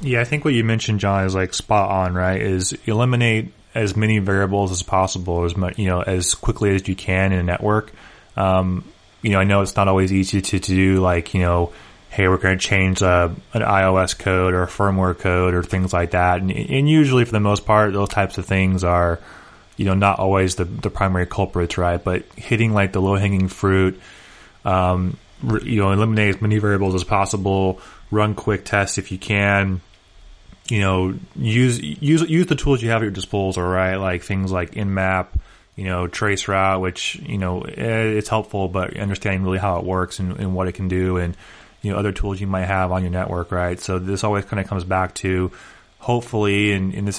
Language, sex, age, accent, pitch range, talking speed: English, male, 20-39, American, 90-100 Hz, 215 wpm